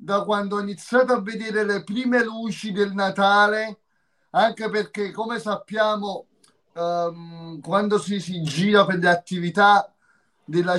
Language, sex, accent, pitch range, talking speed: Italian, male, native, 180-220 Hz, 135 wpm